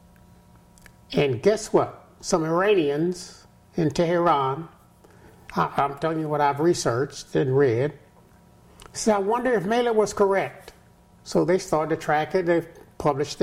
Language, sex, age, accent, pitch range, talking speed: English, male, 60-79, American, 145-195 Hz, 140 wpm